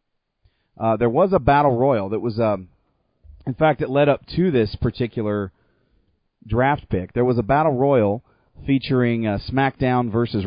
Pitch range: 105-130 Hz